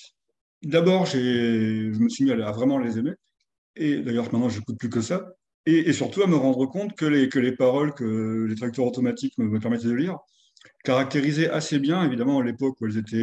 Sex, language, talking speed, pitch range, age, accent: male, French, 220 wpm, 115-150 Hz, 40-59, French